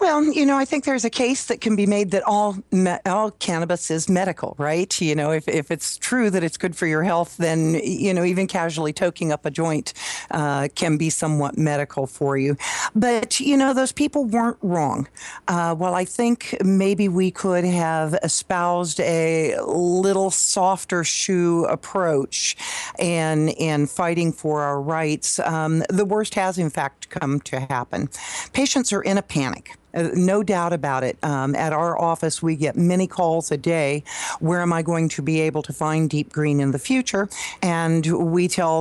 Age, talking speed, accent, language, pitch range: 50-69, 185 wpm, American, English, 155-195 Hz